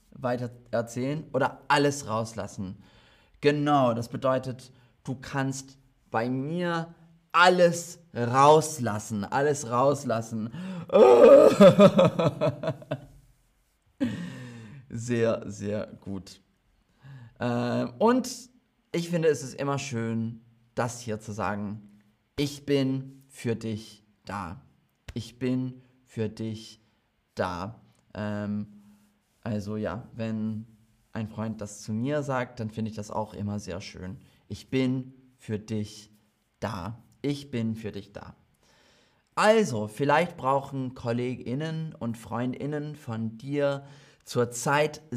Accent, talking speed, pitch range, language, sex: German, 105 wpm, 110-145 Hz, German, male